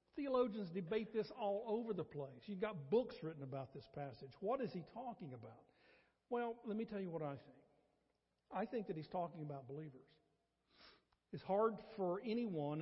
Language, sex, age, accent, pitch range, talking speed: English, male, 50-69, American, 145-200 Hz, 180 wpm